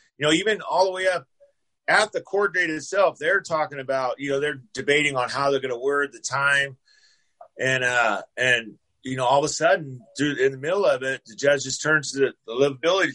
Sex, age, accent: male, 30-49, American